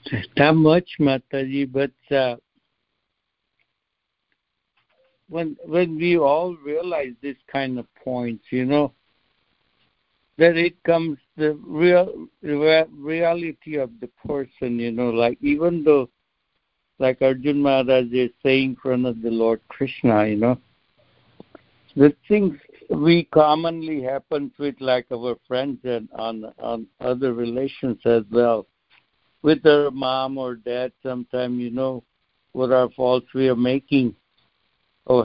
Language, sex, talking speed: English, male, 130 wpm